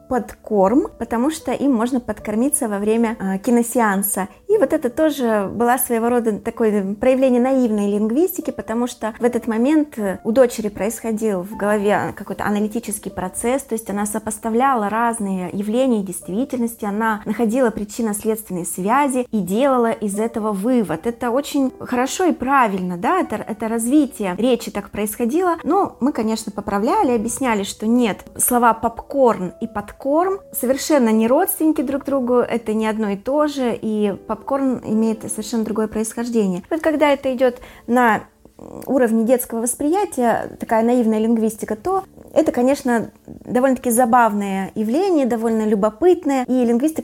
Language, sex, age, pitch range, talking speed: Russian, female, 20-39, 215-260 Hz, 145 wpm